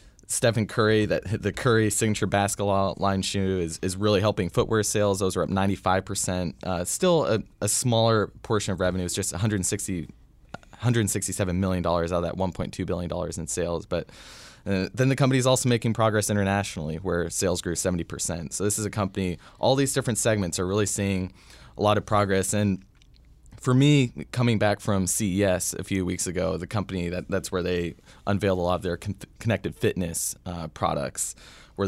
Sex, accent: male, American